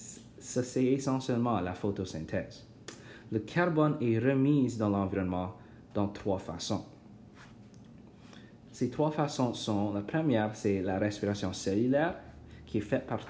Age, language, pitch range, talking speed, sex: 30-49, French, 105-130 Hz, 125 wpm, male